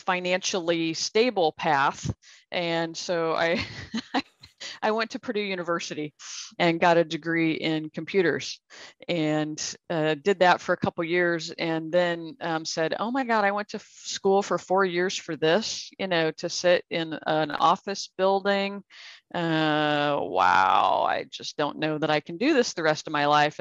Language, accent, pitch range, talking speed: English, American, 160-190 Hz, 170 wpm